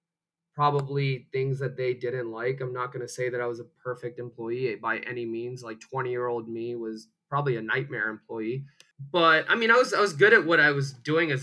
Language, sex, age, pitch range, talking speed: English, male, 20-39, 125-155 Hz, 230 wpm